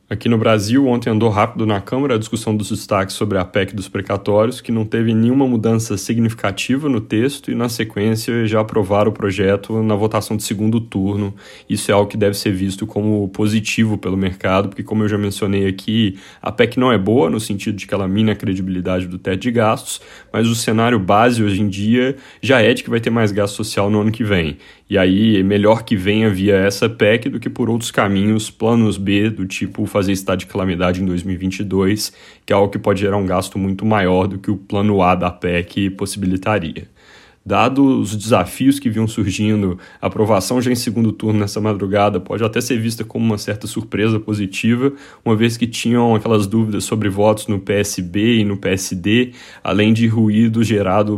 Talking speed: 205 wpm